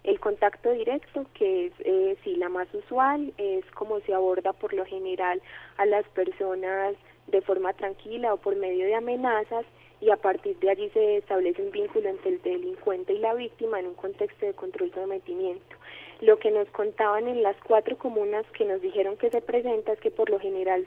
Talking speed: 200 wpm